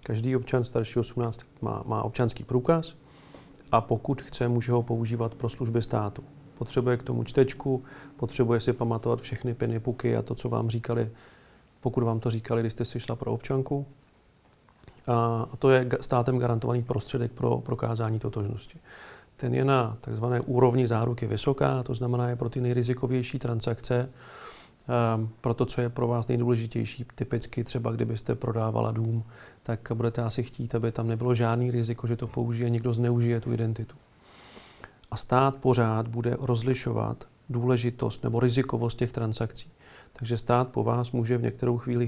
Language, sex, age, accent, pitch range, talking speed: Czech, male, 40-59, native, 115-125 Hz, 160 wpm